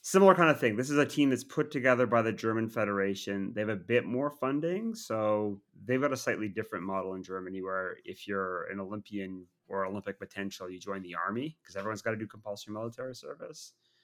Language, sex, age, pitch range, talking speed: English, male, 30-49, 100-125 Hz, 215 wpm